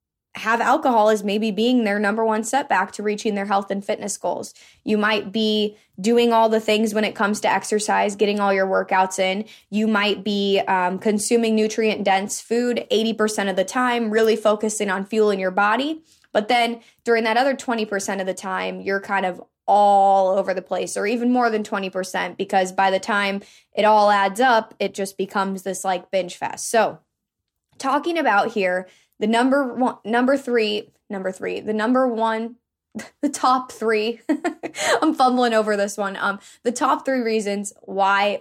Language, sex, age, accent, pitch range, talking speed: English, female, 20-39, American, 195-230 Hz, 180 wpm